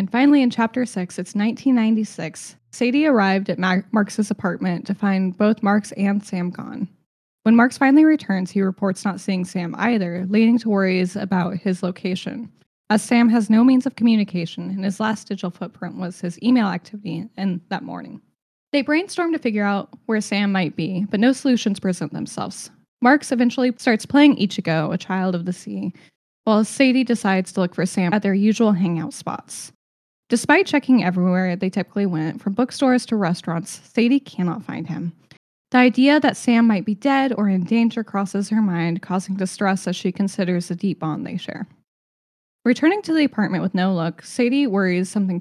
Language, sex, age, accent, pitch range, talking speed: English, female, 10-29, American, 185-230 Hz, 180 wpm